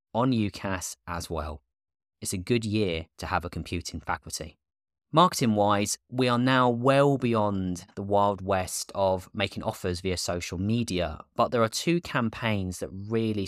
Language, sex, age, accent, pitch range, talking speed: English, male, 20-39, British, 95-125 Hz, 160 wpm